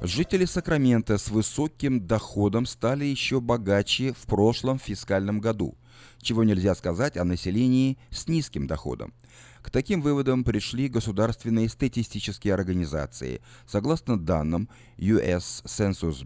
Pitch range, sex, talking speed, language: 95-130 Hz, male, 115 wpm, Russian